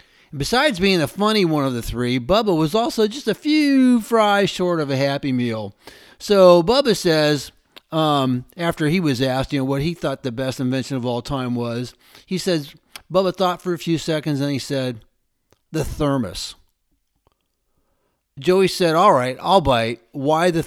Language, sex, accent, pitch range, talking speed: English, male, American, 135-195 Hz, 175 wpm